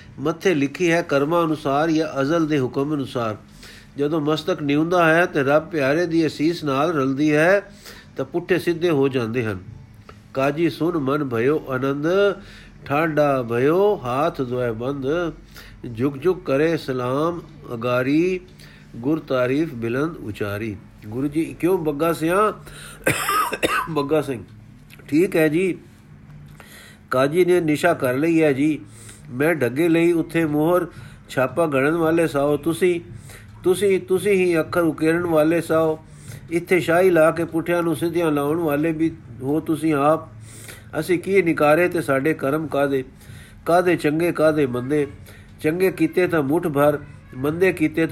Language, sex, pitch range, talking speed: Punjabi, male, 135-165 Hz, 140 wpm